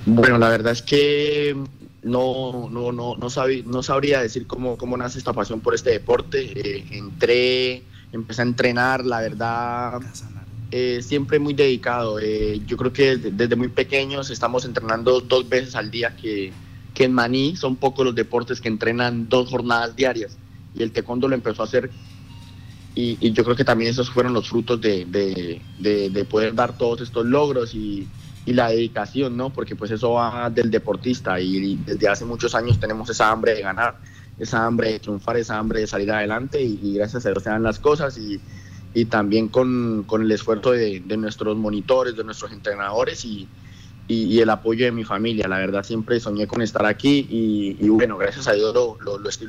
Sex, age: male, 30-49